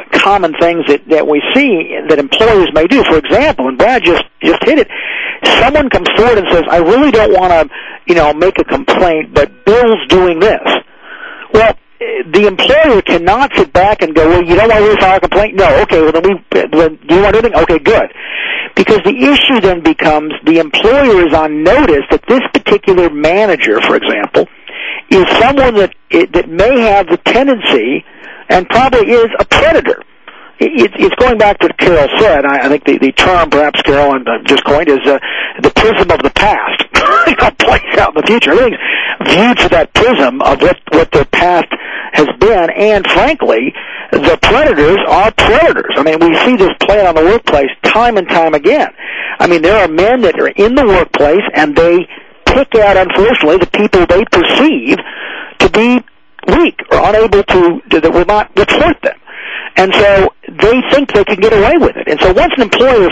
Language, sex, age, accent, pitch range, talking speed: English, male, 50-69, American, 165-280 Hz, 190 wpm